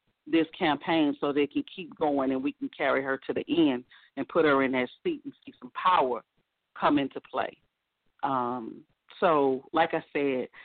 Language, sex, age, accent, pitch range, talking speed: English, female, 40-59, American, 140-175 Hz, 185 wpm